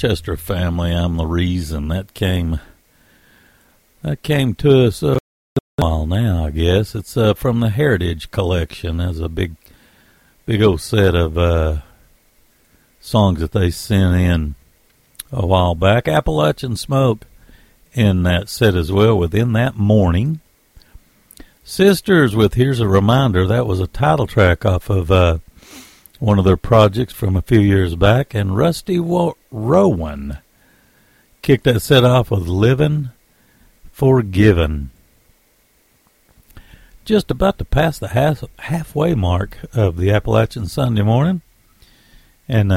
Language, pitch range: English, 90-135 Hz